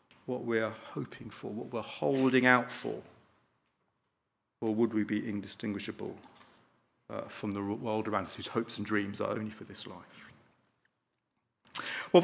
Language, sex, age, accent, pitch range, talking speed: English, male, 40-59, British, 110-145 Hz, 145 wpm